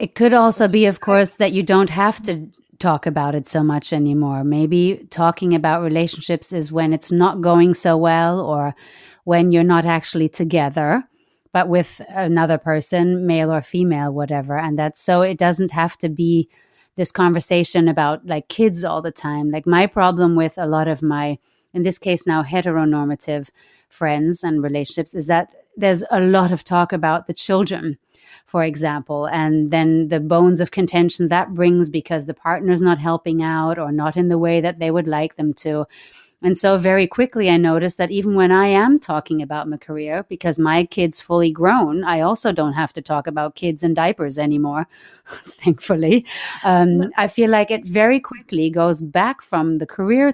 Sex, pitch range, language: female, 160-185 Hz, English